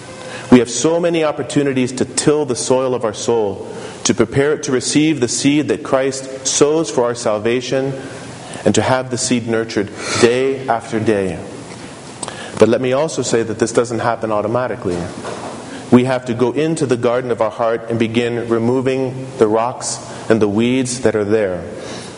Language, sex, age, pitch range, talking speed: English, male, 40-59, 115-140 Hz, 175 wpm